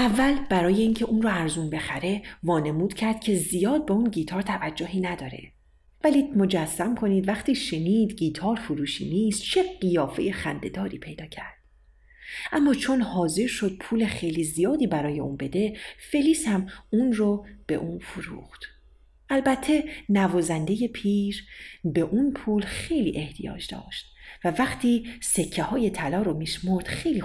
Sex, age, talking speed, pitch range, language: female, 40-59, 140 wpm, 170-225 Hz, Persian